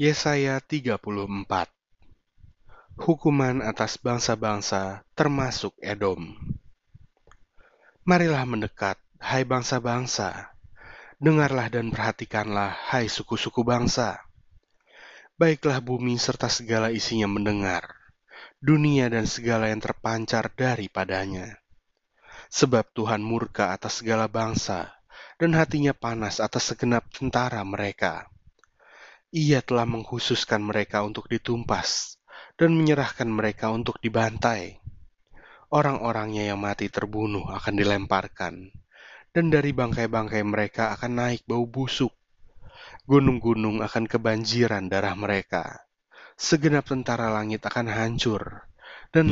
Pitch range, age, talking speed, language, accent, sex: 105-130 Hz, 30-49, 95 wpm, Indonesian, native, male